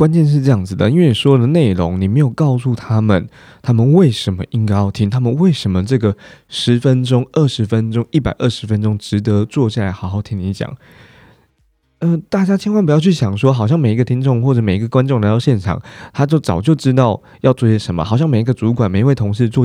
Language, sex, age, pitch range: Chinese, male, 20-39, 105-140 Hz